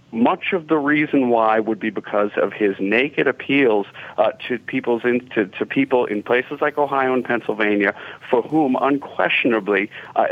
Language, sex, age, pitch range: English, male, 40-59, 110-135 Hz